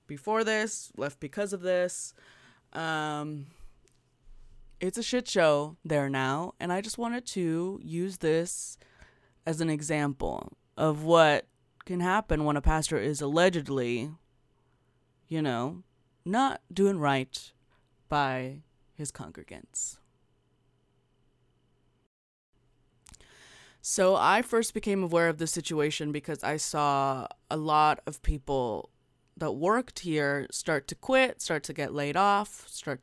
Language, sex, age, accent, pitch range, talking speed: English, female, 20-39, American, 135-170 Hz, 120 wpm